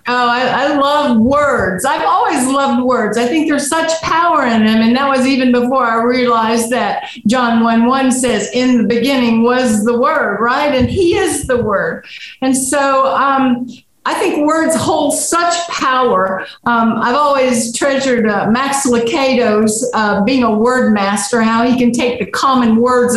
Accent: American